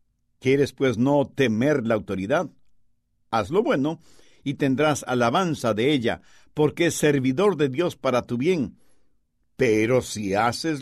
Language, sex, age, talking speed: Spanish, male, 60-79, 140 wpm